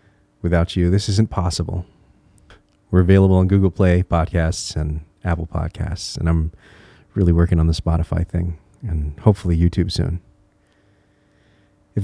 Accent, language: American, English